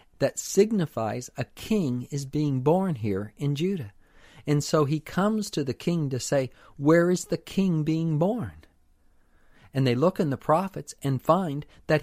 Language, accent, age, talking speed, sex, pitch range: English, American, 50-69, 170 wpm, male, 115-165 Hz